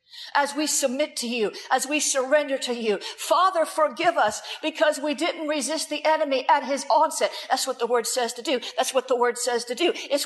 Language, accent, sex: English, American, female